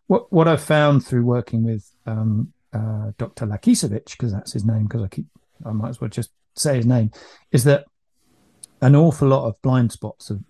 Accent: British